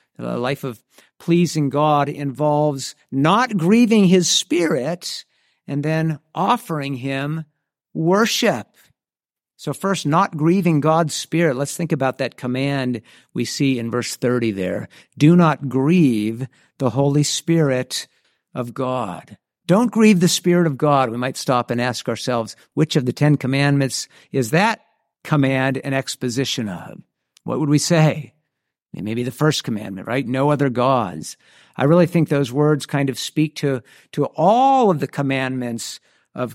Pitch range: 135-175 Hz